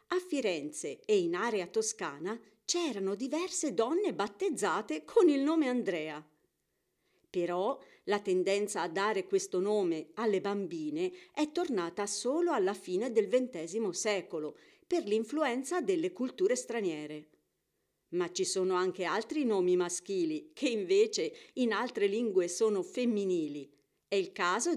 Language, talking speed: Italian, 130 wpm